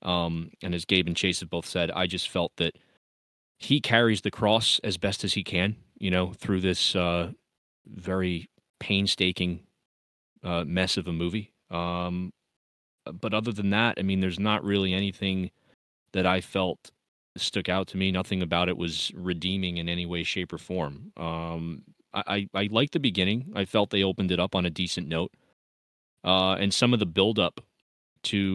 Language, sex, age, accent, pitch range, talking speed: English, male, 20-39, American, 90-105 Hz, 185 wpm